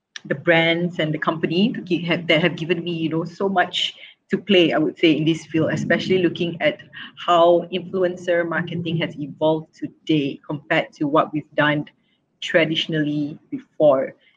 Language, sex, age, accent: English, female, 30-49, Malaysian